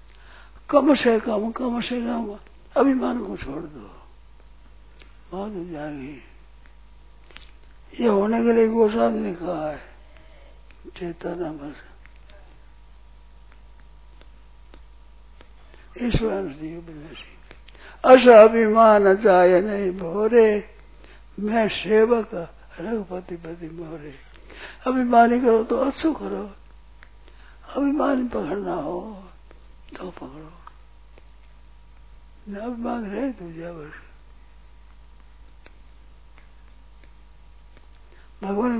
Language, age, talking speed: Hindi, 60-79, 70 wpm